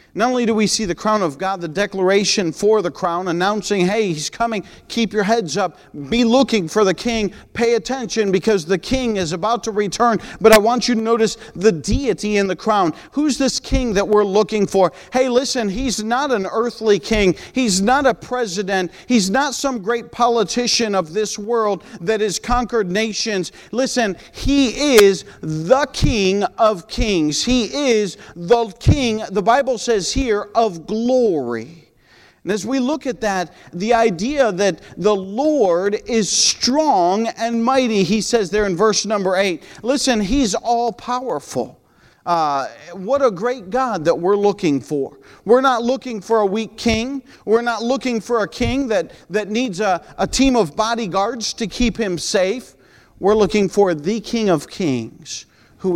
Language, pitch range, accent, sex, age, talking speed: English, 195-240 Hz, American, male, 40-59, 175 wpm